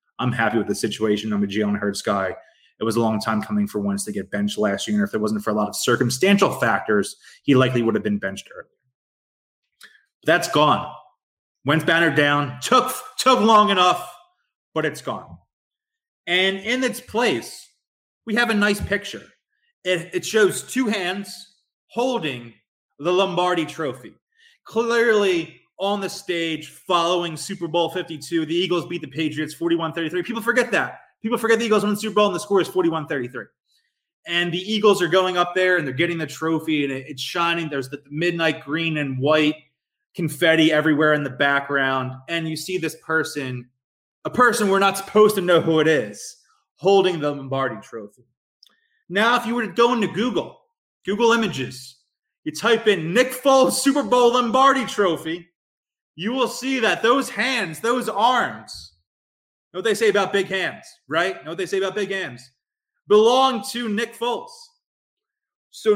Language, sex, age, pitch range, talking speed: English, male, 20-39, 150-225 Hz, 175 wpm